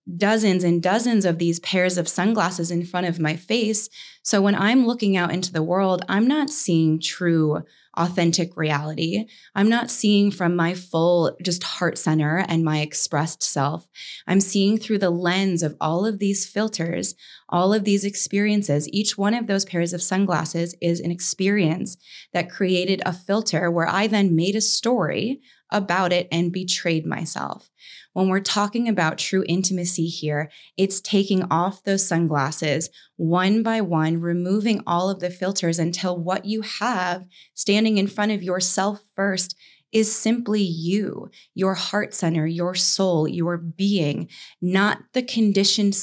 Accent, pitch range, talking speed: American, 165-205 Hz, 160 wpm